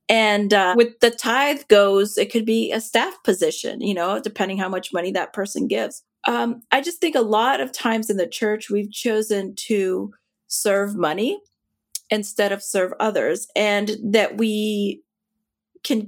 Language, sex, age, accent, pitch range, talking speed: English, female, 30-49, American, 190-225 Hz, 170 wpm